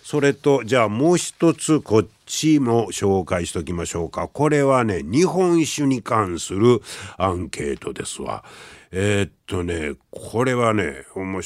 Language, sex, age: Japanese, male, 60-79